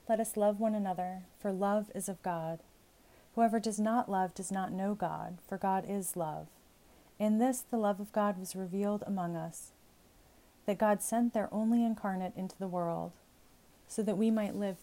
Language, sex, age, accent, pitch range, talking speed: English, female, 30-49, American, 180-215 Hz, 185 wpm